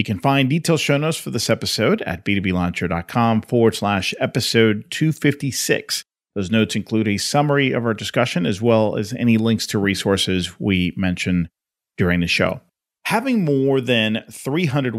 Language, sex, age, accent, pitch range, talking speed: English, male, 40-59, American, 100-140 Hz, 155 wpm